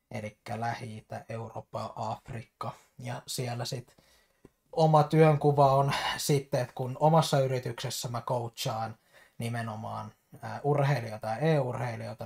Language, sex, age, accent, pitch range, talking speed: Finnish, male, 20-39, native, 115-135 Hz, 110 wpm